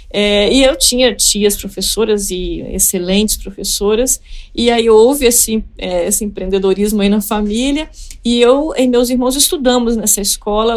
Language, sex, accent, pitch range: Portuguese, female, Brazilian, 215-265 Hz